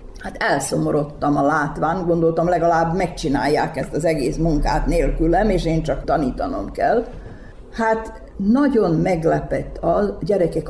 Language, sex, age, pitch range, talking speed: Hungarian, female, 50-69, 150-205 Hz, 125 wpm